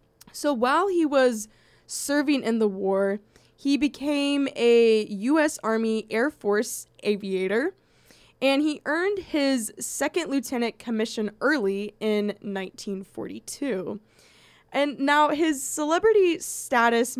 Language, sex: English, female